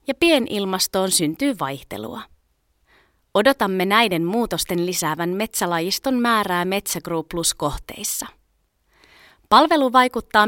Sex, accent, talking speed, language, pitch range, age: female, native, 75 wpm, Finnish, 170-245 Hz, 20-39